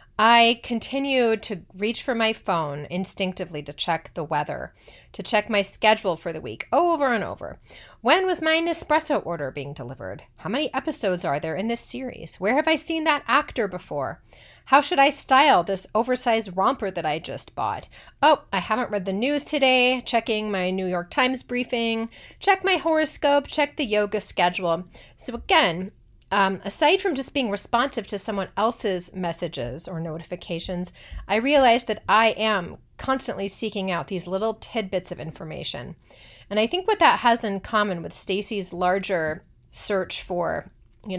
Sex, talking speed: female, 170 wpm